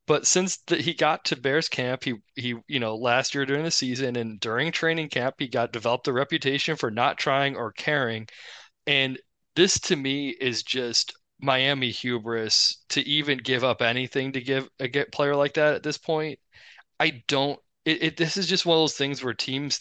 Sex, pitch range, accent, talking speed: male, 120-150 Hz, American, 205 wpm